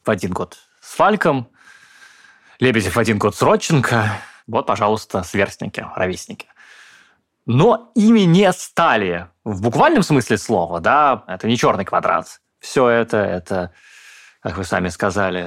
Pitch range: 100-140 Hz